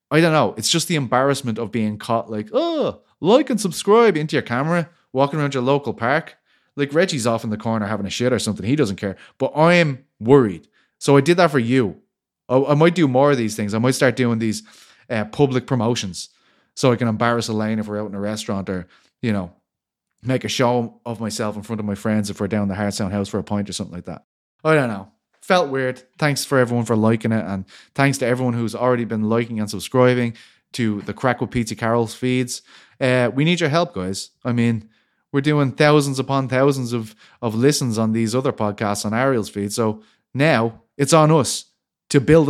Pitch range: 105-135 Hz